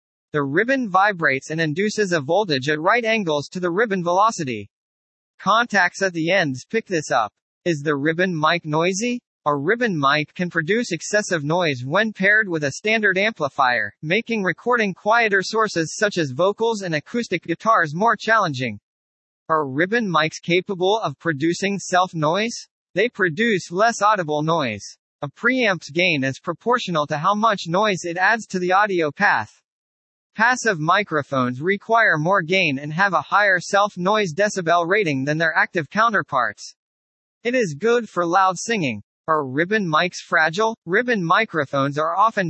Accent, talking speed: American, 150 wpm